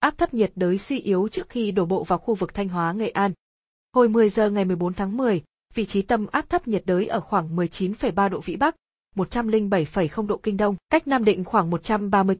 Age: 20-39